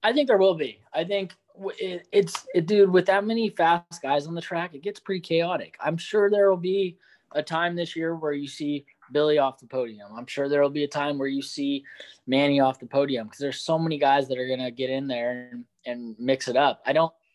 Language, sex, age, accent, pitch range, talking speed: English, male, 20-39, American, 140-180 Hz, 240 wpm